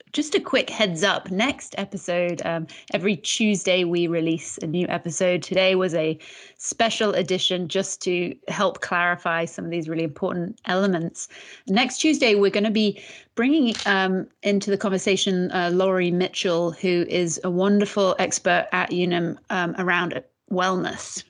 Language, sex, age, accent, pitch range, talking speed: English, female, 30-49, British, 175-205 Hz, 150 wpm